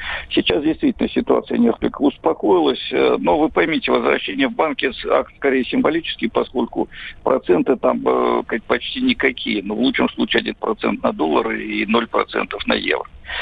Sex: male